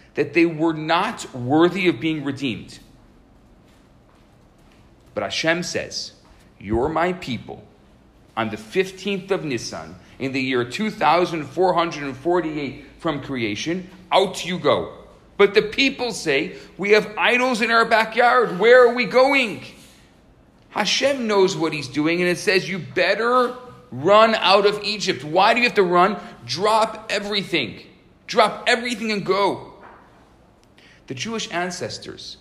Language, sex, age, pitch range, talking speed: English, male, 40-59, 150-210 Hz, 130 wpm